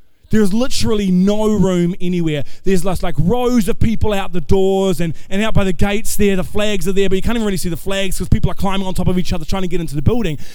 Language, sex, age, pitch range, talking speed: English, male, 20-39, 190-295 Hz, 265 wpm